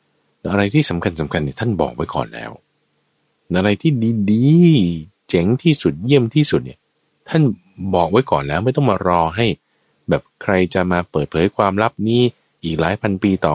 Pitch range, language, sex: 75-105 Hz, Thai, male